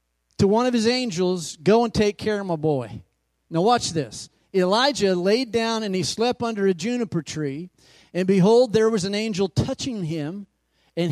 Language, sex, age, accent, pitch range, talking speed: English, male, 40-59, American, 165-225 Hz, 185 wpm